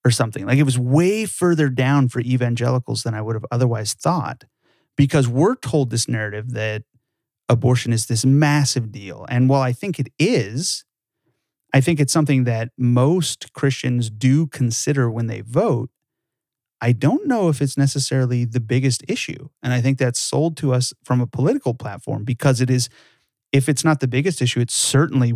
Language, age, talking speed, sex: English, 30-49, 180 wpm, male